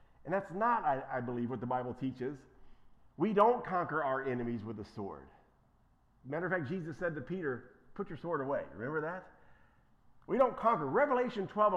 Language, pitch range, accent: English, 125-175 Hz, American